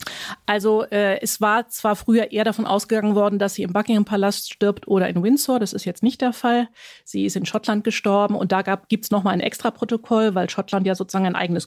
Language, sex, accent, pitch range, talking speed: German, female, German, 185-215 Hz, 215 wpm